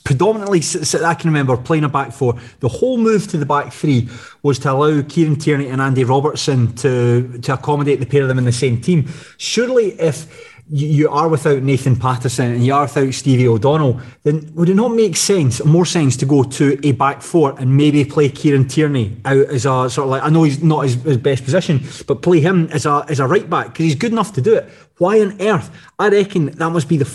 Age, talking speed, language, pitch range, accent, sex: 30-49, 230 wpm, English, 130-160 Hz, British, male